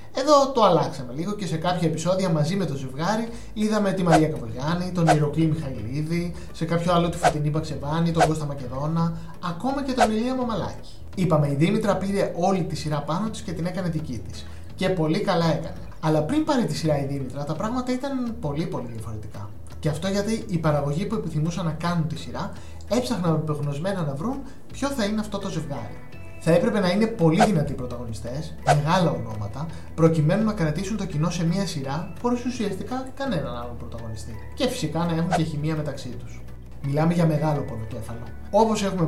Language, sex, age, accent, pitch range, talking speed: Greek, male, 20-39, native, 145-200 Hz, 185 wpm